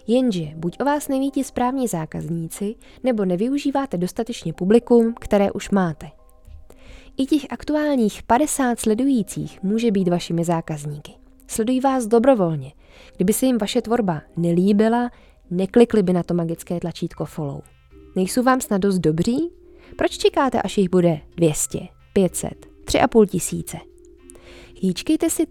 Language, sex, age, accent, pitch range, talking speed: Czech, female, 20-39, native, 175-255 Hz, 125 wpm